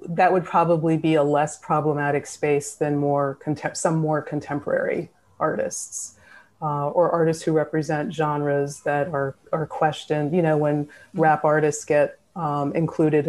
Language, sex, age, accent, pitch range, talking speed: English, female, 30-49, American, 145-170 Hz, 150 wpm